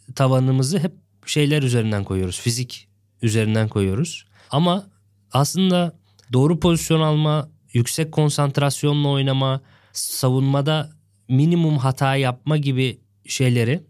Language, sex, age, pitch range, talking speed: Turkish, male, 20-39, 115-160 Hz, 95 wpm